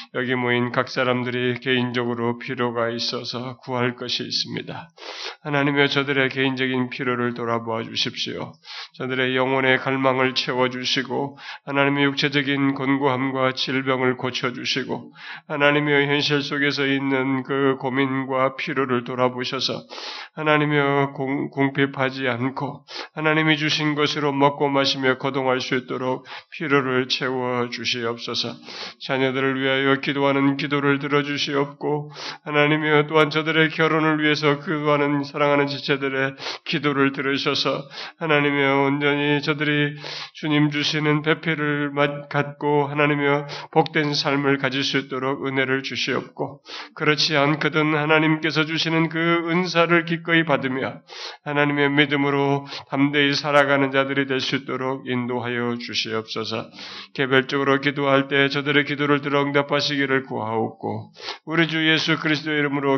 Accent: native